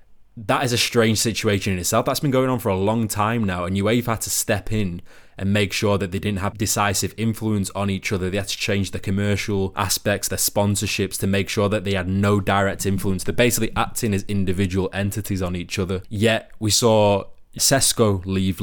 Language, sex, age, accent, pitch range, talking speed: English, male, 20-39, British, 95-120 Hz, 215 wpm